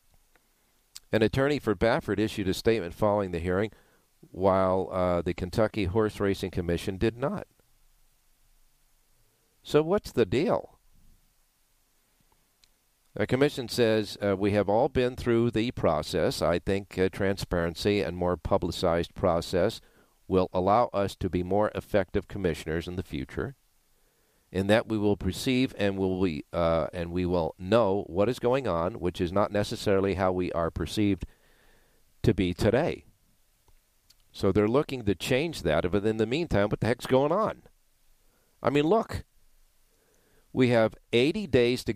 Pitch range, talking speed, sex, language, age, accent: 95-120 Hz, 145 wpm, male, English, 50-69, American